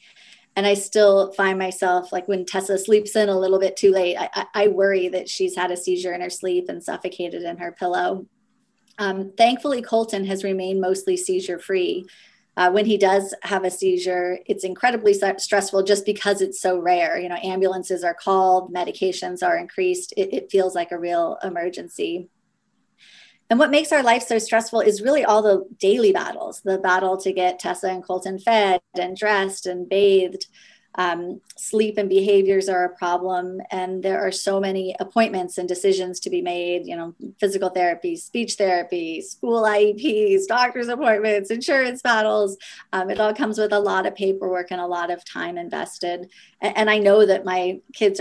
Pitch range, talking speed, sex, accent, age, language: 185-220 Hz, 180 wpm, female, American, 30-49, English